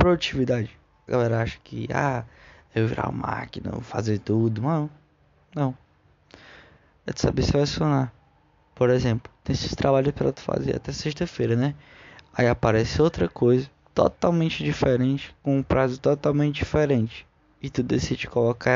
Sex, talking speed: male, 150 wpm